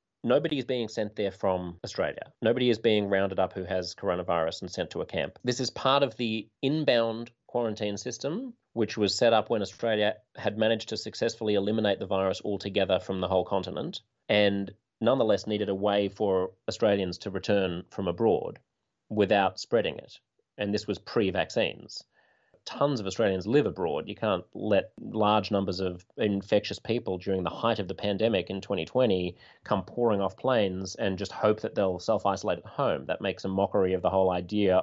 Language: English